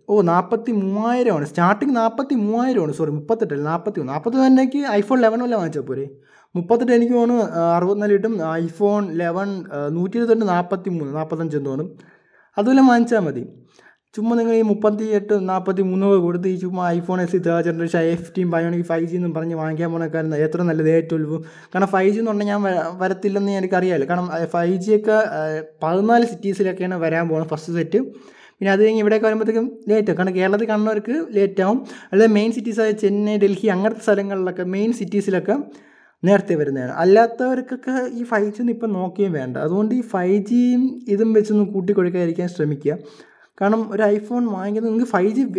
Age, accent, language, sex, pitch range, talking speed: 20-39, native, Malayalam, male, 170-220 Hz, 170 wpm